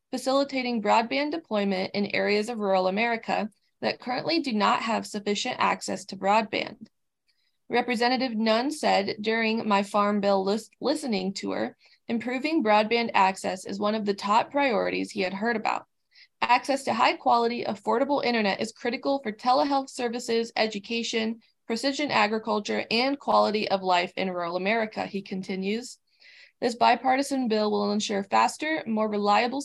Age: 20-39